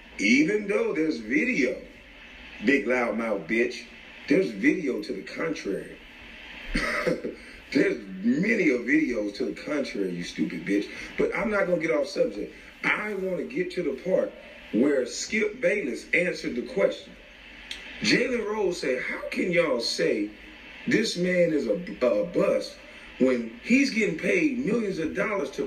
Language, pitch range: English, 150-250 Hz